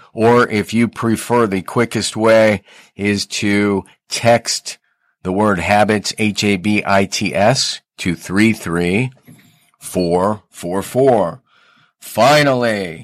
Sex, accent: male, American